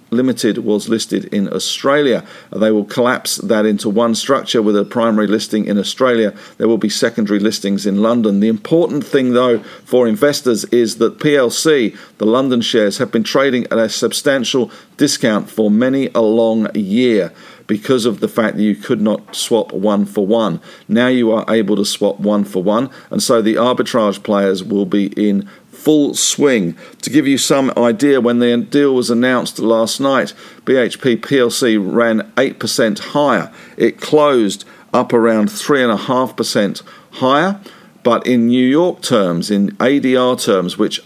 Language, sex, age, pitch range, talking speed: English, male, 50-69, 105-125 Hz, 170 wpm